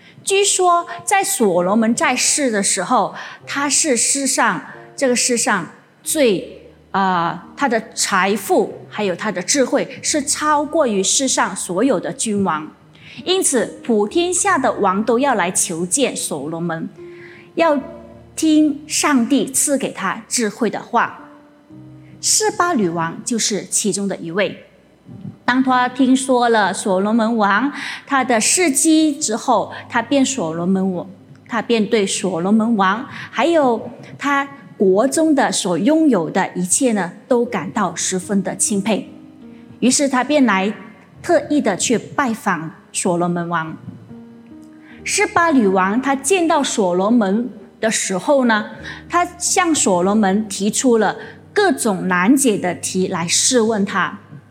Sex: female